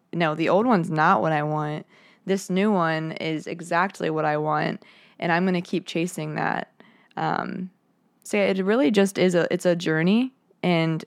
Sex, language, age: female, English, 20-39